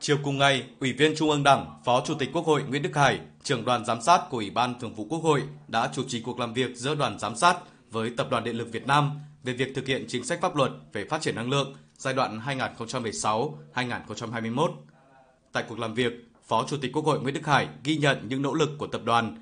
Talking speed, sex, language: 245 wpm, male, Vietnamese